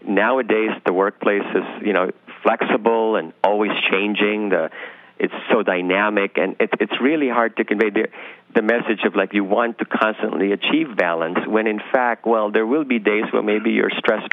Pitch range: 95-115 Hz